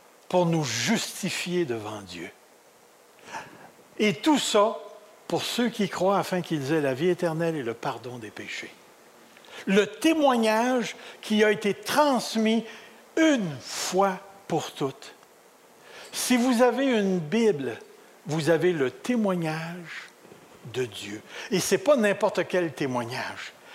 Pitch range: 160-225 Hz